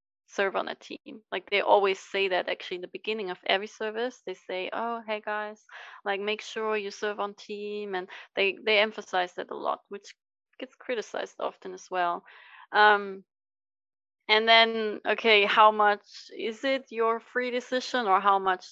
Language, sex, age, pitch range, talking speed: English, female, 20-39, 195-230 Hz, 175 wpm